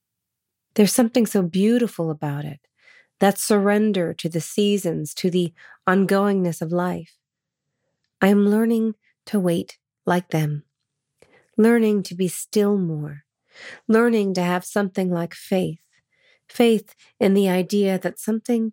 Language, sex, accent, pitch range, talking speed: English, female, American, 160-200 Hz, 130 wpm